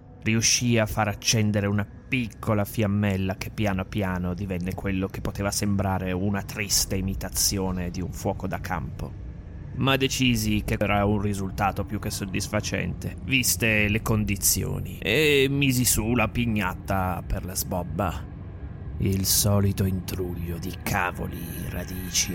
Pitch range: 95-120 Hz